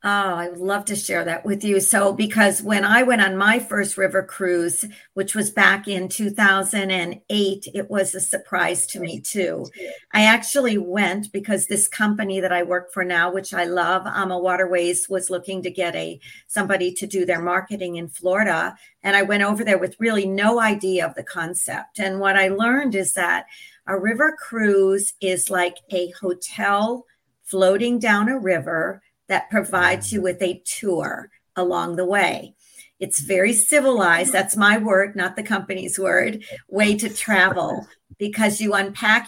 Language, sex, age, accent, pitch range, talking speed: English, female, 50-69, American, 185-215 Hz, 170 wpm